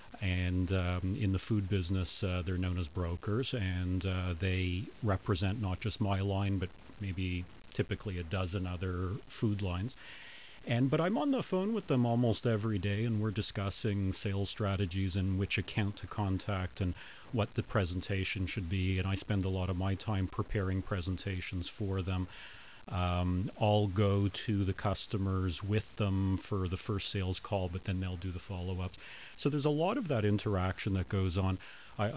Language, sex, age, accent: English, male, 40-59, American